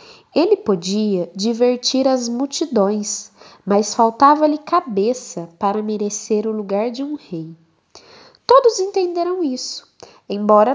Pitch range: 195-270 Hz